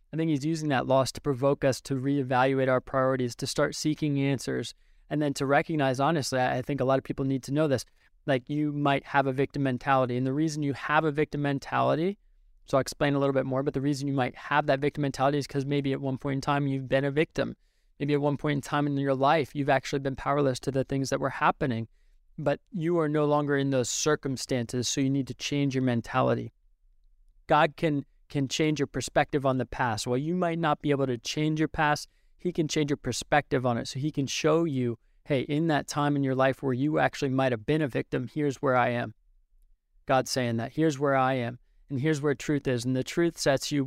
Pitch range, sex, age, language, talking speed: 130-150 Hz, male, 20-39, English, 240 wpm